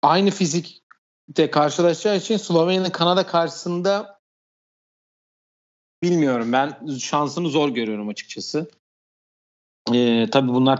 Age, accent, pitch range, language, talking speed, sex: 40-59, native, 115-165 Hz, Turkish, 90 wpm, male